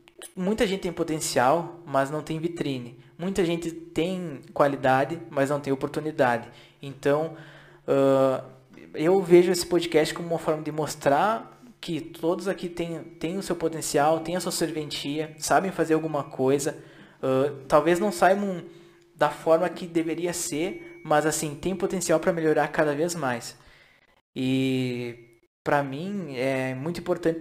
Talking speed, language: 145 wpm, Portuguese